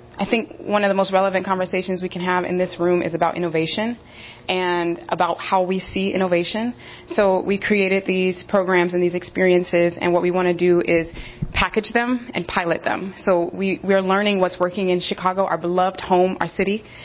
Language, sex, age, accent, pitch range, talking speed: English, female, 20-39, American, 175-195 Hz, 200 wpm